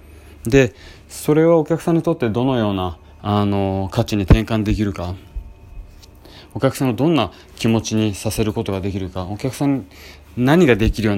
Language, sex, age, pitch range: Japanese, male, 20-39, 80-115 Hz